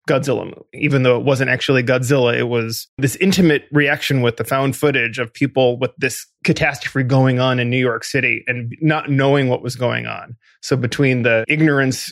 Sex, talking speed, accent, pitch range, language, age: male, 195 wpm, American, 125-145 Hz, English, 20-39